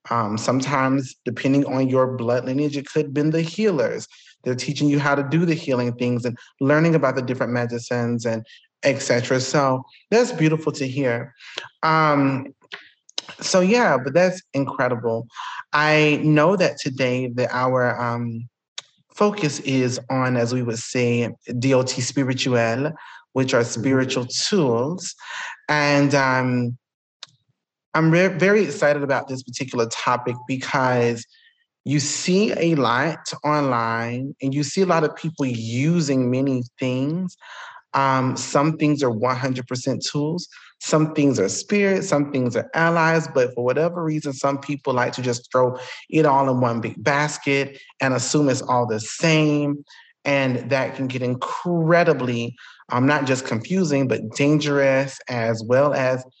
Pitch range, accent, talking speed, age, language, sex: 125-150 Hz, American, 145 wpm, 30-49, English, male